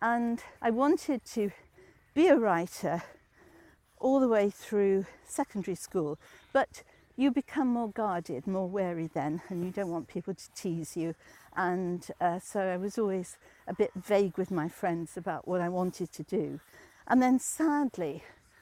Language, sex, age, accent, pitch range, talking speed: English, female, 60-79, British, 180-220 Hz, 160 wpm